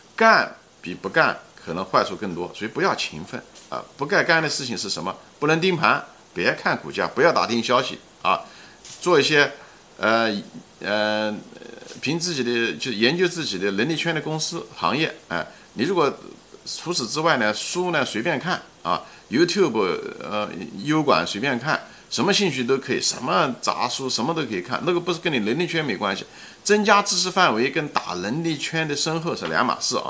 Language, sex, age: Chinese, male, 50-69